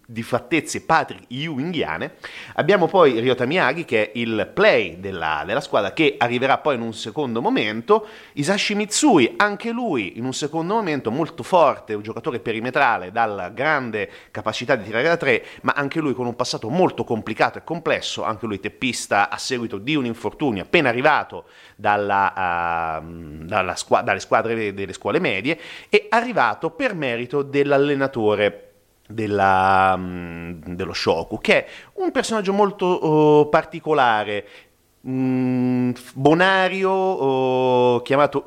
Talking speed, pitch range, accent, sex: 140 wpm, 110-160 Hz, native, male